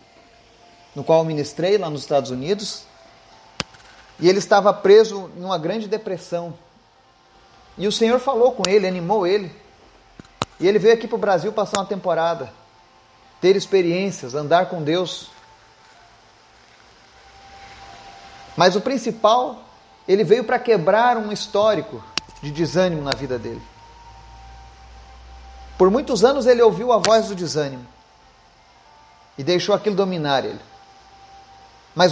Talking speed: 125 wpm